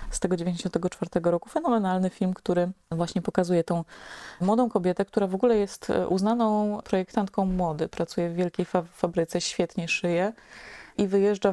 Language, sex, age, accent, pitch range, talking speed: Polish, female, 20-39, native, 175-200 Hz, 140 wpm